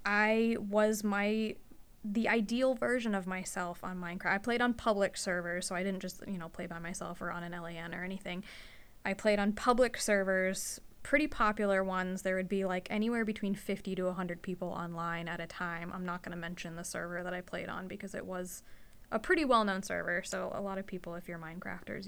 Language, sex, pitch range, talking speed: English, female, 185-215 Hz, 215 wpm